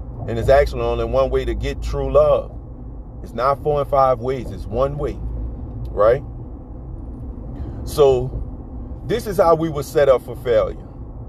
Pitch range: 115-150 Hz